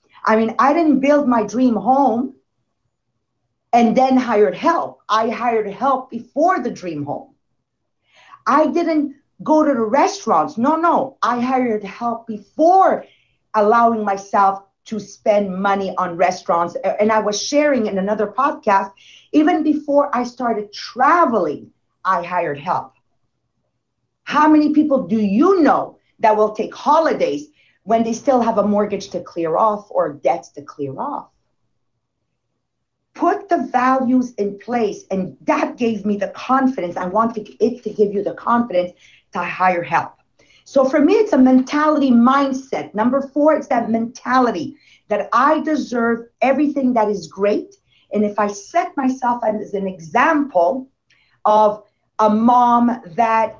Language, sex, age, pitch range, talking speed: English, female, 40-59, 210-275 Hz, 145 wpm